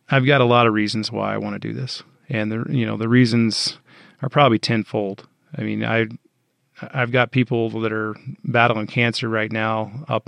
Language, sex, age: English, male, 30-49